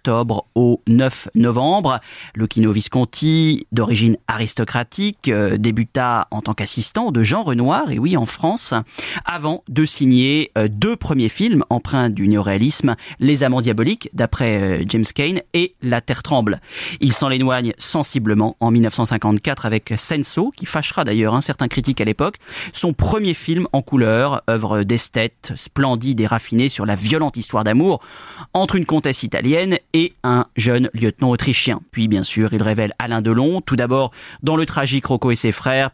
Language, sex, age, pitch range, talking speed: French, male, 30-49, 110-135 Hz, 165 wpm